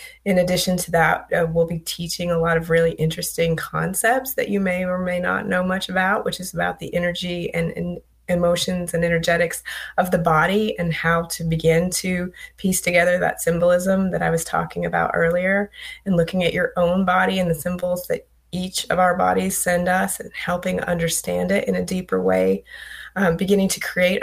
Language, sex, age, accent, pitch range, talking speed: English, female, 20-39, American, 165-195 Hz, 195 wpm